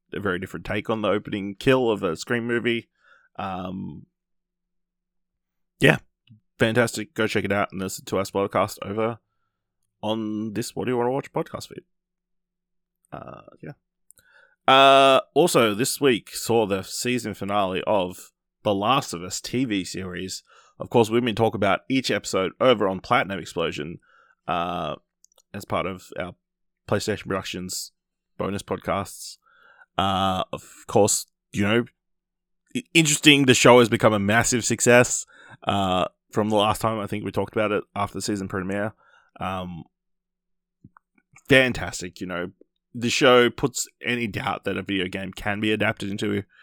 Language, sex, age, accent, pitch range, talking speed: English, male, 20-39, Australian, 100-125 Hz, 150 wpm